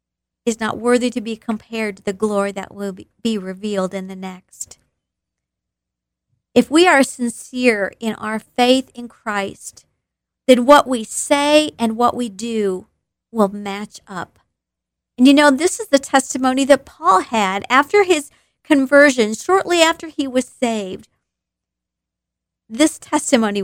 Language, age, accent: English, 50-69, American